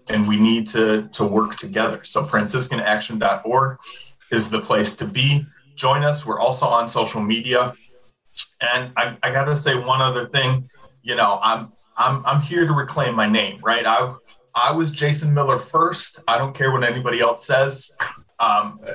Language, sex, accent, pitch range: English, male, American, 125-165 Hz